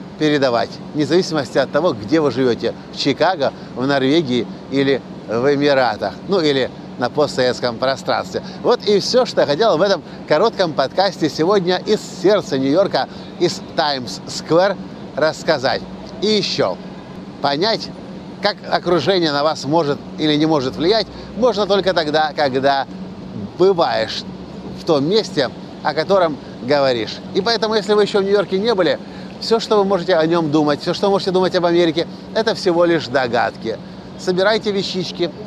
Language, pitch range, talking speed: Russian, 145-195 Hz, 145 wpm